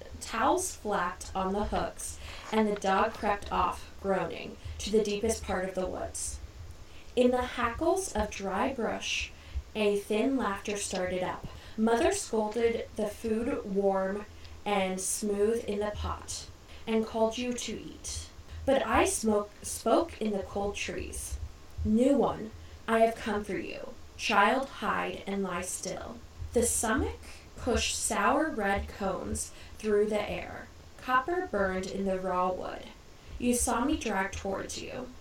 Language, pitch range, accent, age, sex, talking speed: English, 185-235 Hz, American, 10-29, female, 145 wpm